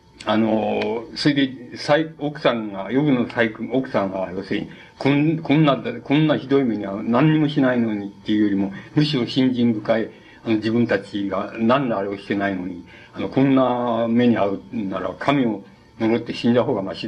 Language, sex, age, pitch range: Japanese, male, 60-79, 100-125 Hz